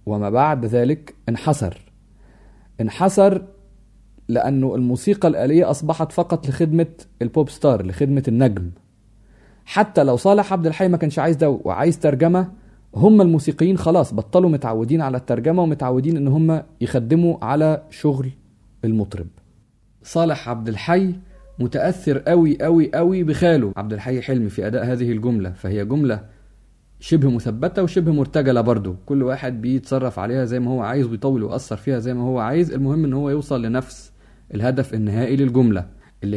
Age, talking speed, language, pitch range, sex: 30-49, 140 wpm, Arabic, 110-150 Hz, male